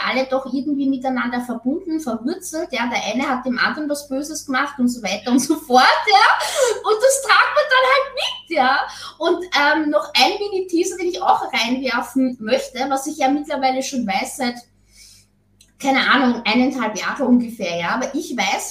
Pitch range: 245-300 Hz